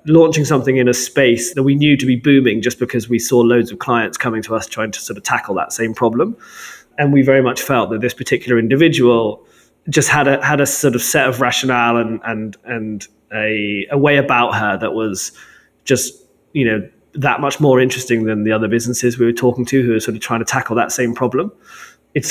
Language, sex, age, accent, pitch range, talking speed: English, male, 20-39, British, 115-135 Hz, 225 wpm